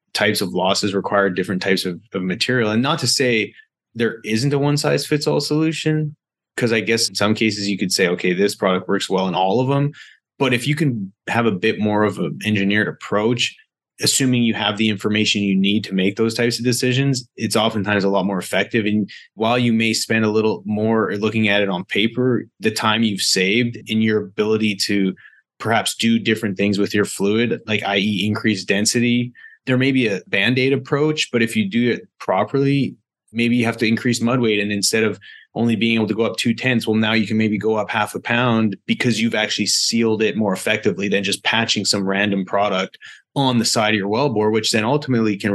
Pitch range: 105-120 Hz